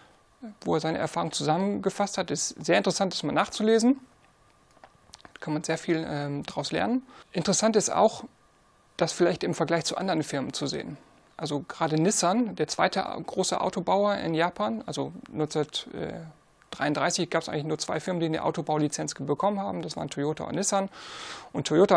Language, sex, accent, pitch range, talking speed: German, male, German, 155-195 Hz, 165 wpm